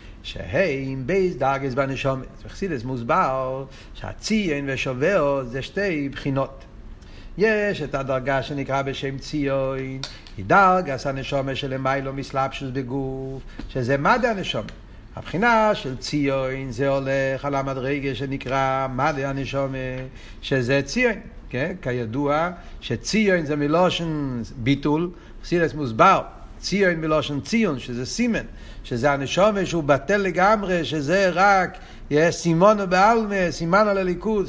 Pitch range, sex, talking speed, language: 130-175 Hz, male, 110 wpm, Hebrew